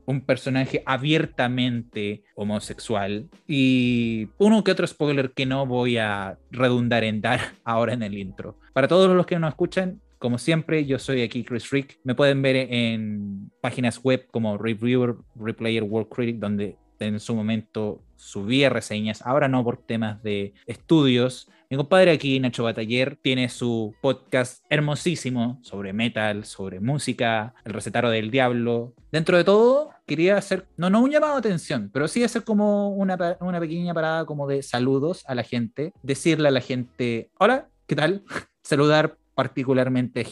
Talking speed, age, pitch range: 160 wpm, 20-39, 115-150 Hz